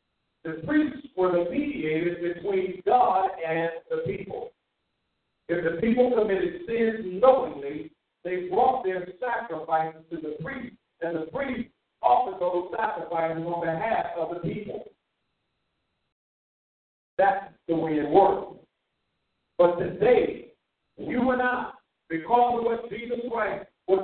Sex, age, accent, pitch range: male, 50-69, American, 175-265 Hz